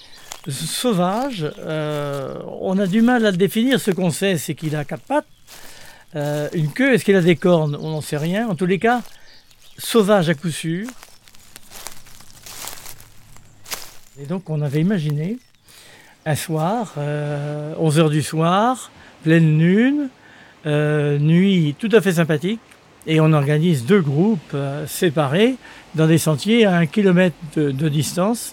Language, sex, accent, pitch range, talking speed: French, male, French, 155-210 Hz, 150 wpm